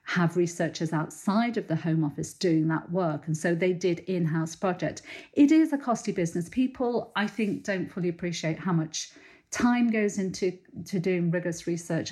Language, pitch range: English, 160-180 Hz